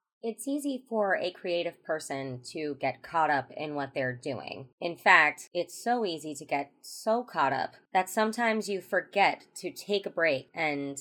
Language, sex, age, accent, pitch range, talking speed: English, female, 20-39, American, 160-205 Hz, 180 wpm